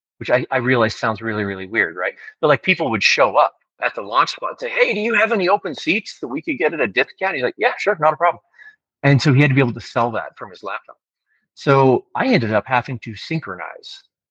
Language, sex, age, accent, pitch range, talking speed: English, male, 40-59, American, 110-140 Hz, 260 wpm